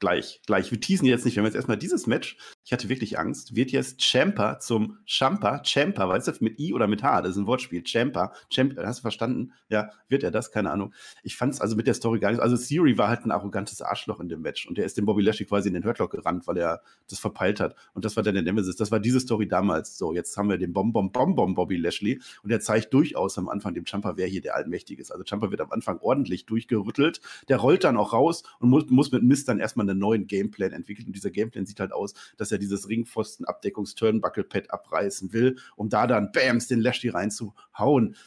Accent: German